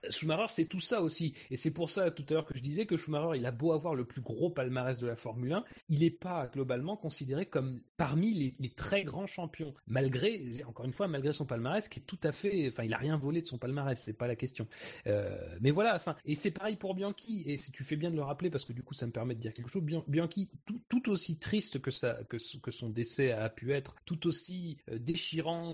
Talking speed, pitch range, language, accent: 255 wpm, 130-170 Hz, French, French